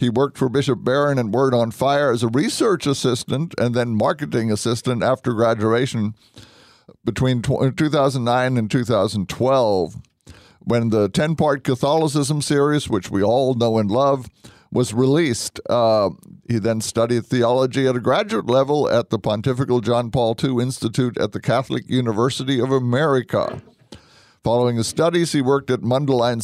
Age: 50-69